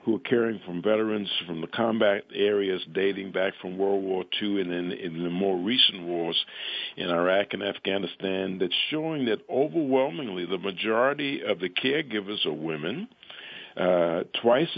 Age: 50-69